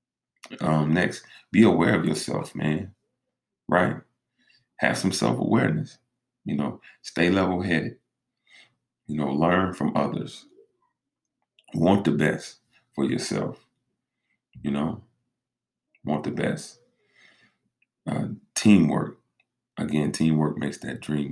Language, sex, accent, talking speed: English, male, American, 105 wpm